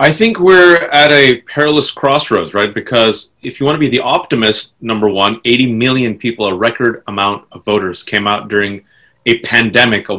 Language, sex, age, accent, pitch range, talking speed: English, male, 30-49, American, 105-145 Hz, 190 wpm